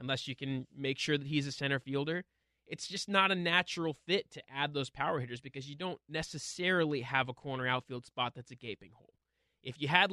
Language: English